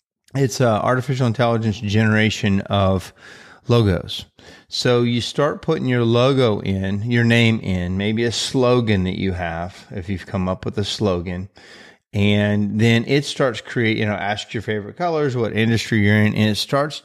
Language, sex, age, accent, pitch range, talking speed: English, male, 30-49, American, 100-120 Hz, 170 wpm